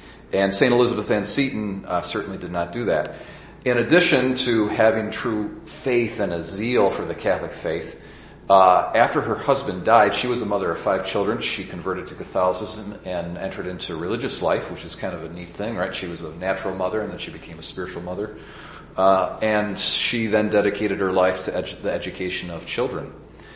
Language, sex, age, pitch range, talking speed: English, male, 40-59, 90-115 Hz, 200 wpm